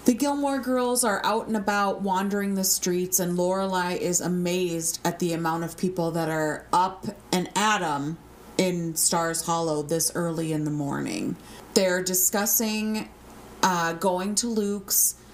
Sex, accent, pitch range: female, American, 170-215 Hz